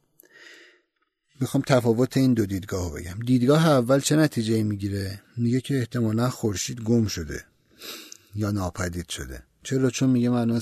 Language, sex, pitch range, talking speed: Persian, male, 110-135 Hz, 135 wpm